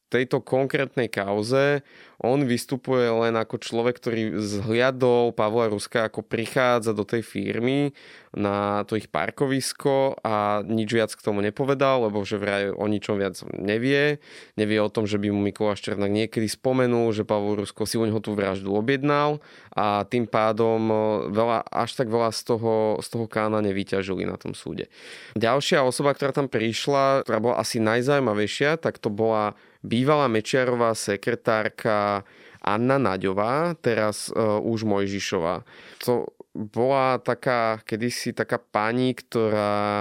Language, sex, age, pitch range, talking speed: Slovak, male, 20-39, 105-130 Hz, 145 wpm